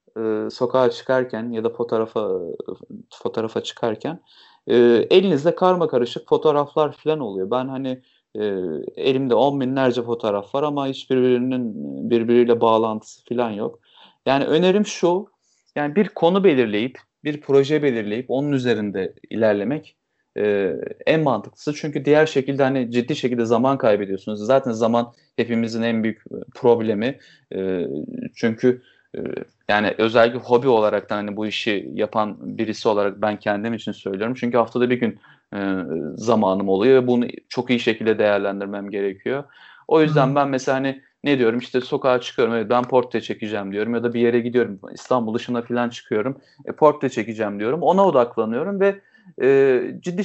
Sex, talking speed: male, 135 wpm